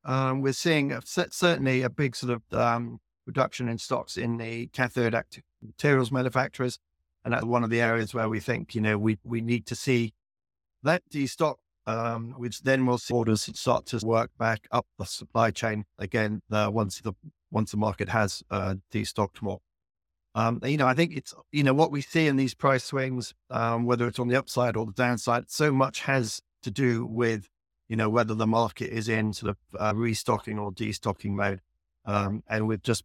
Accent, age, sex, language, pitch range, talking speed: British, 50-69, male, English, 110-125 Hz, 200 wpm